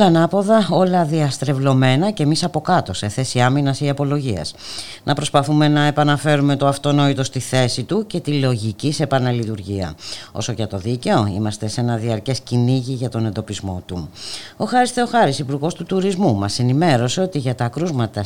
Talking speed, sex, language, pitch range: 170 wpm, female, Greek, 105-145 Hz